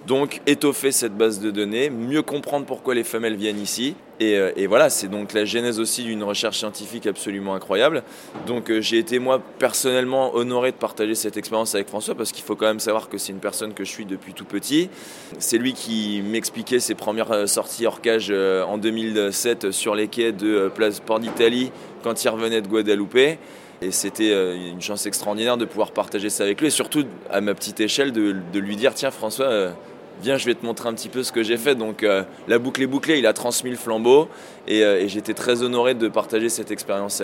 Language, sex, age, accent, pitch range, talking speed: French, male, 20-39, French, 105-125 Hz, 215 wpm